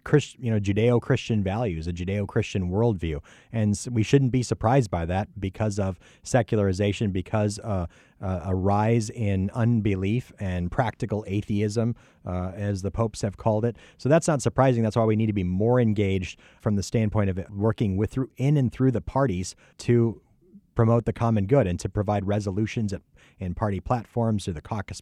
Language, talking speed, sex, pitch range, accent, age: English, 175 wpm, male, 95-115 Hz, American, 30-49